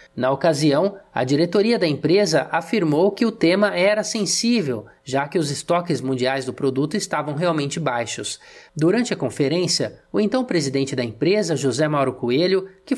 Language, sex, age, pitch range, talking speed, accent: Portuguese, male, 20-39, 145-200 Hz, 155 wpm, Brazilian